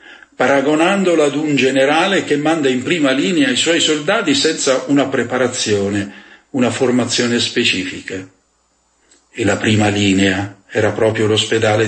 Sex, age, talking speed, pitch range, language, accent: male, 50-69, 125 wpm, 105-135 Hz, Italian, native